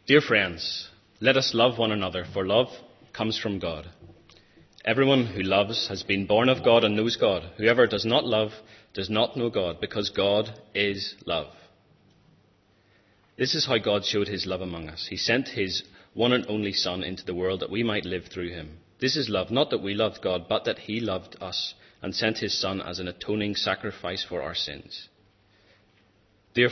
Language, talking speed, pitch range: English, 190 wpm, 95-110 Hz